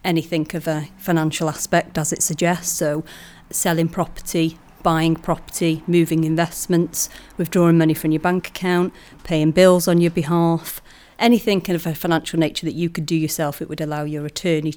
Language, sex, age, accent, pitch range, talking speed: English, female, 30-49, British, 160-180 Hz, 170 wpm